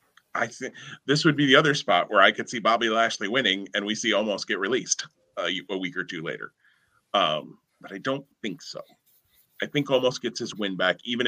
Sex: male